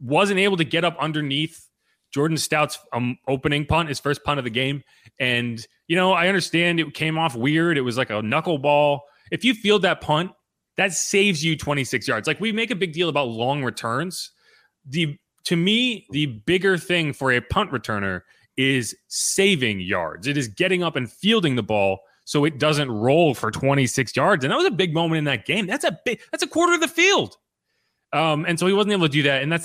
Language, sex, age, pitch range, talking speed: English, male, 30-49, 125-185 Hz, 215 wpm